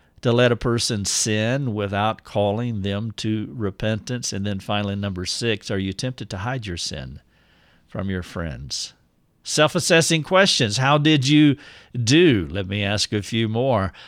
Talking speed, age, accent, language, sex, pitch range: 160 wpm, 50-69, American, English, male, 100-125 Hz